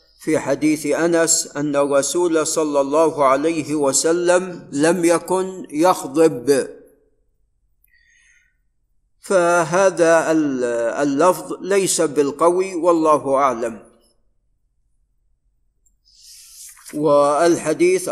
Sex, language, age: male, Arabic, 50-69